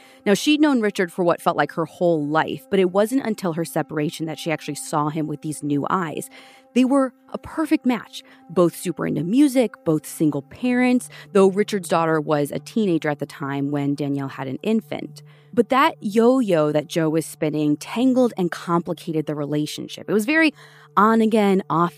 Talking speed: 190 wpm